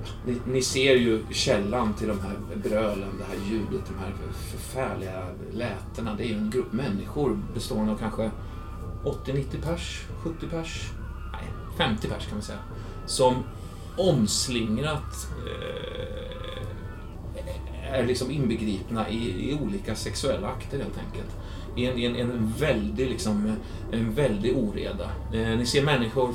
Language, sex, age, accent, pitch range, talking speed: Swedish, male, 30-49, native, 100-120 Hz, 140 wpm